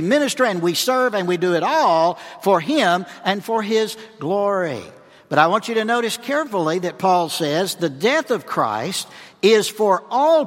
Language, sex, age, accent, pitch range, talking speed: English, male, 60-79, American, 165-225 Hz, 185 wpm